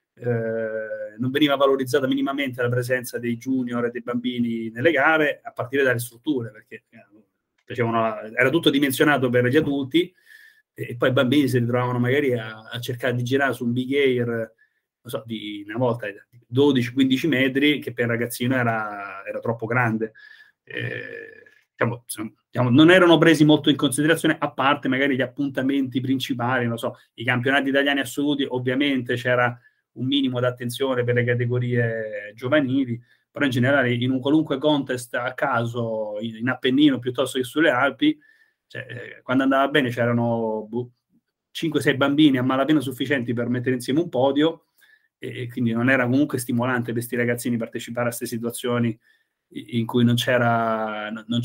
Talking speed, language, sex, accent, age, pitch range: 160 wpm, Italian, male, native, 30-49, 120-140 Hz